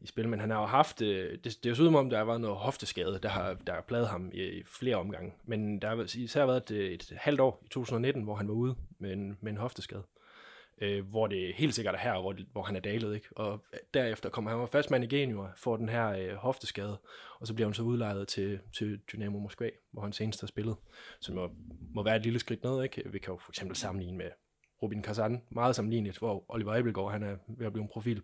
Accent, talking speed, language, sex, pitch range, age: native, 250 wpm, Danish, male, 100-120 Hz, 20-39